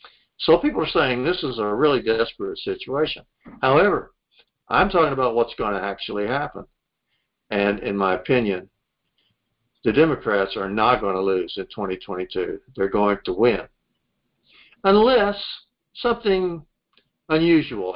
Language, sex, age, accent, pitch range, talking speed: English, male, 60-79, American, 115-165 Hz, 130 wpm